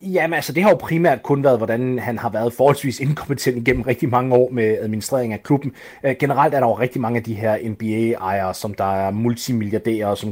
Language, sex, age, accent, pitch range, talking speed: Danish, male, 30-49, native, 110-135 Hz, 215 wpm